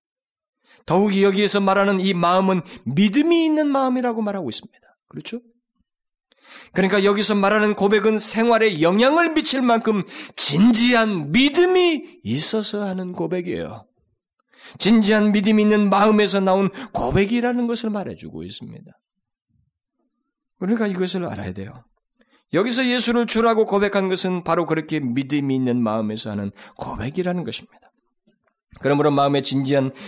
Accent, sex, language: native, male, Korean